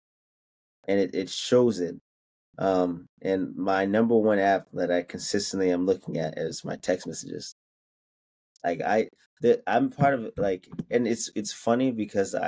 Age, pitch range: 20-39, 90-110 Hz